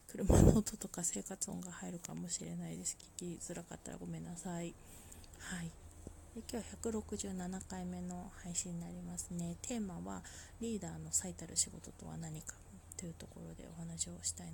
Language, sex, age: Japanese, female, 20-39